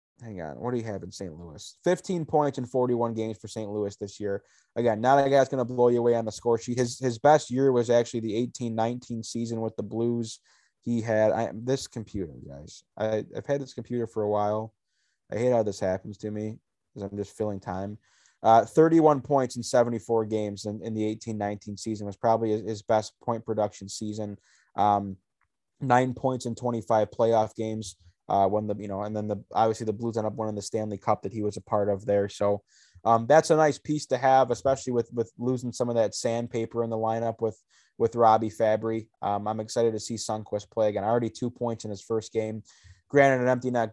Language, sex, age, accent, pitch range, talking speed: English, male, 20-39, American, 110-125 Hz, 225 wpm